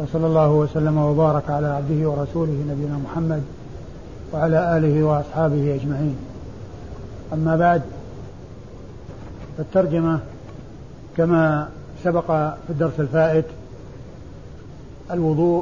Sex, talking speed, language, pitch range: male, 85 wpm, Arabic, 150-175 Hz